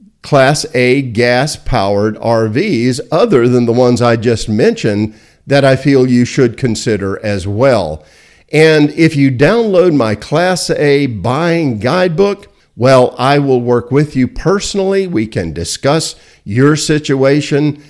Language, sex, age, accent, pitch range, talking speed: English, male, 50-69, American, 110-145 Hz, 135 wpm